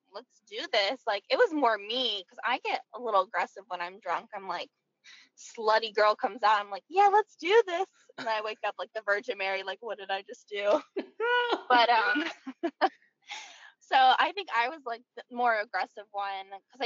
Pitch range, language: 210-285 Hz, English